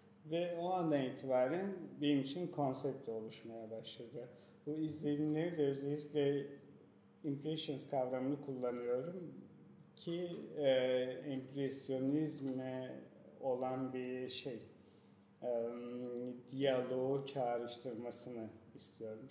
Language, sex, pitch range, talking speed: Turkish, male, 125-160 Hz, 80 wpm